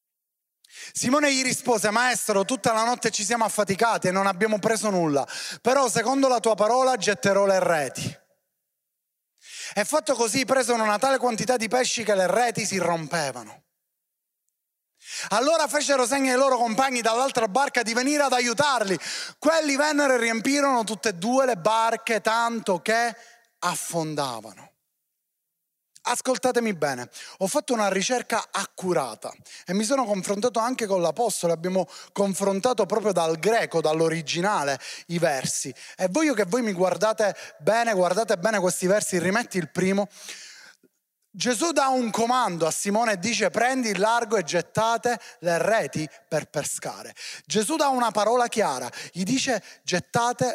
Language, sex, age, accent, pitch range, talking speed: Italian, male, 30-49, native, 185-245 Hz, 145 wpm